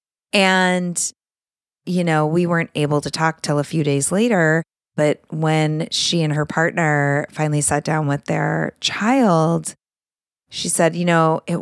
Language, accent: English, American